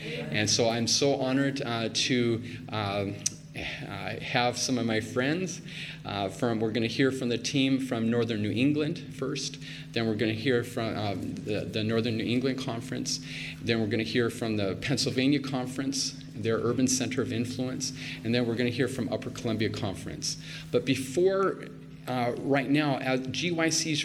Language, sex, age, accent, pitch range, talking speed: English, male, 40-59, American, 115-135 Hz, 175 wpm